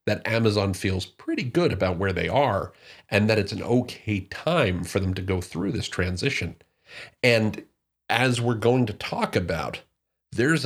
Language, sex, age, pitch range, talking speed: English, male, 40-59, 95-125 Hz, 170 wpm